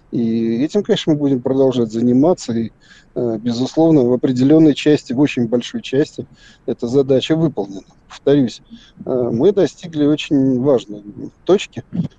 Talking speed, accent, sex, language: 125 wpm, native, male, Russian